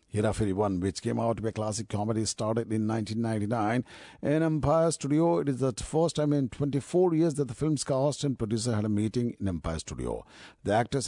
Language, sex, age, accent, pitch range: Japanese, male, 50-69, Indian, 110-145 Hz